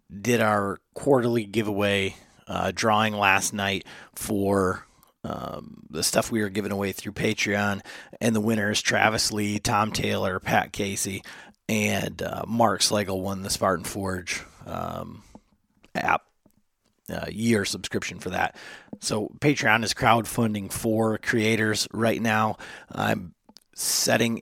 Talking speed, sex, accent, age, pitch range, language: 130 wpm, male, American, 30-49, 100-110 Hz, English